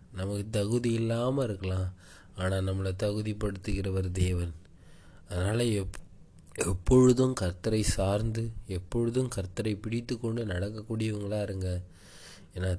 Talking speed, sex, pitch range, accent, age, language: 95 wpm, male, 90-105 Hz, native, 20-39, Tamil